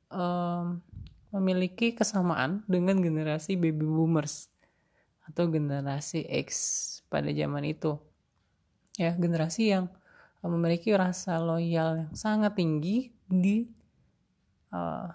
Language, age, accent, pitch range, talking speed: Indonesian, 30-49, native, 150-190 Hz, 90 wpm